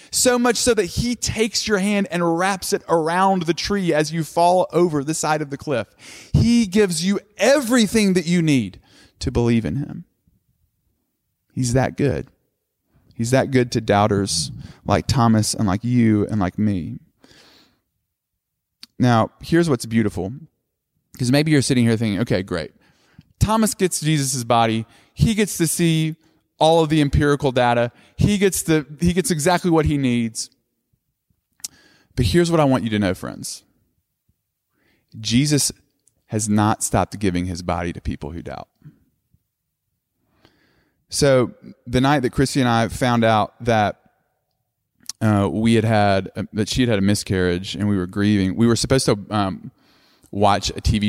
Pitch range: 100-160 Hz